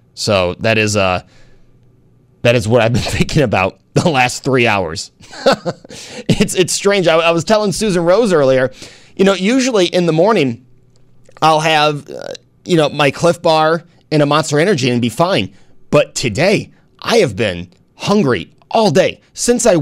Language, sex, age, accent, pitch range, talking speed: English, male, 30-49, American, 125-170 Hz, 170 wpm